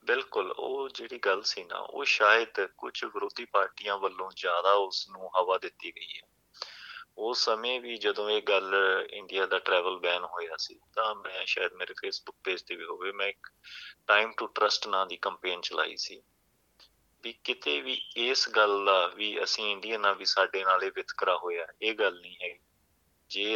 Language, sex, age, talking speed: Punjabi, male, 30-49, 160 wpm